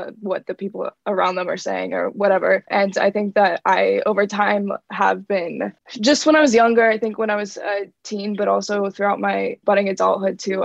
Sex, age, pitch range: female, 20-39, 190-220 Hz